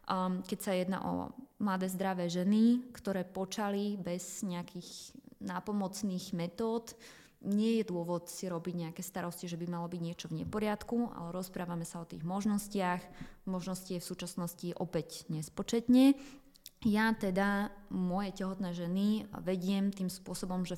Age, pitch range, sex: 20-39, 175-210 Hz, female